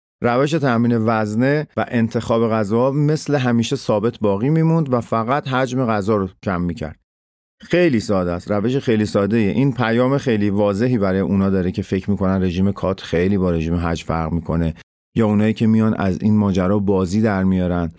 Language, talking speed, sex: Persian, 175 wpm, male